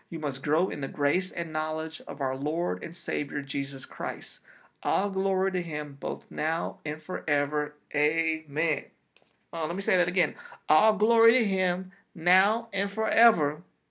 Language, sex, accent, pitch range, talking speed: English, male, American, 150-185 Hz, 160 wpm